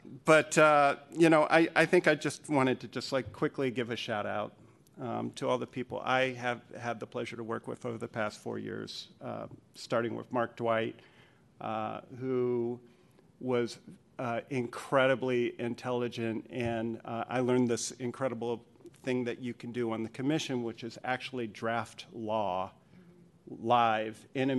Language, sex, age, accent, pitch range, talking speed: English, male, 50-69, American, 120-130 Hz, 170 wpm